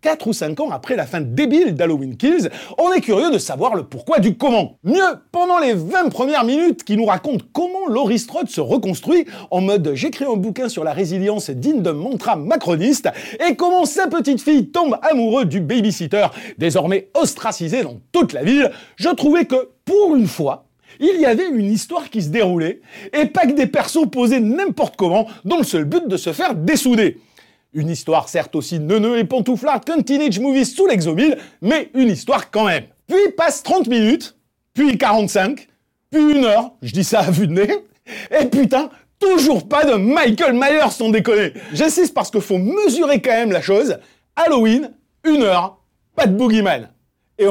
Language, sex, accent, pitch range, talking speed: French, male, French, 200-300 Hz, 185 wpm